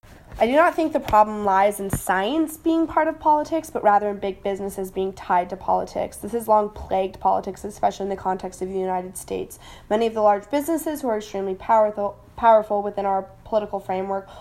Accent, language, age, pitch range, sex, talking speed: American, English, 10-29, 195-220 Hz, female, 205 wpm